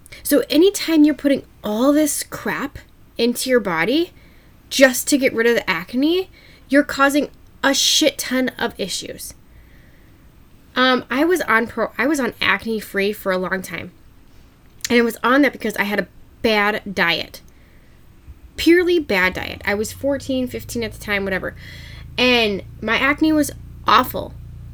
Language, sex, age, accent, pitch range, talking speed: English, female, 10-29, American, 210-290 Hz, 160 wpm